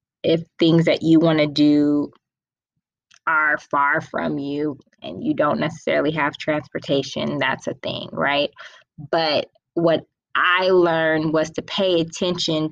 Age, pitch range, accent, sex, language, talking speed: 20-39, 160-215 Hz, American, female, English, 135 wpm